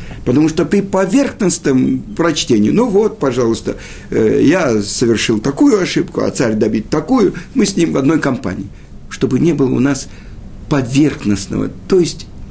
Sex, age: male, 50-69